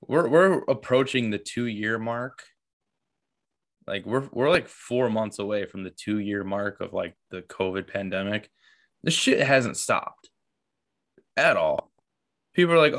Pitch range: 95-120 Hz